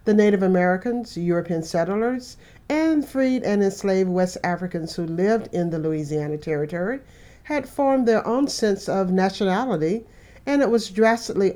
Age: 50-69